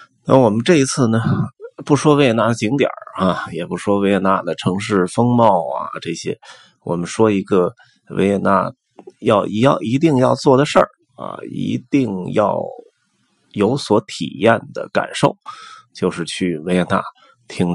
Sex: male